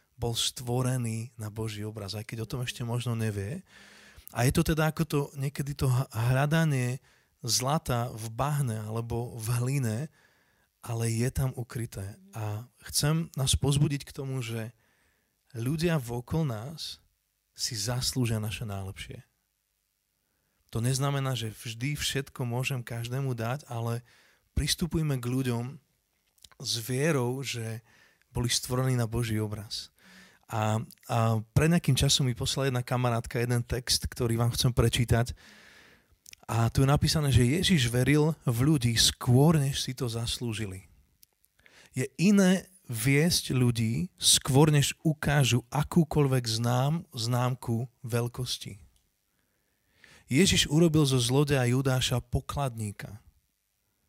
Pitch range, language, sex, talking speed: 115-145 Hz, Slovak, male, 125 wpm